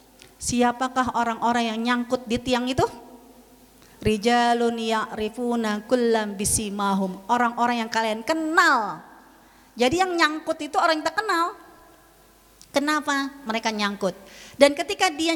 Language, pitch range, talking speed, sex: Indonesian, 235-350 Hz, 115 wpm, female